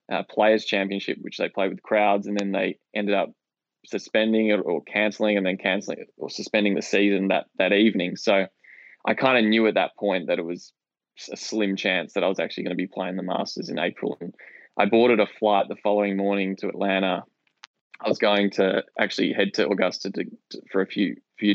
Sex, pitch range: male, 95-105 Hz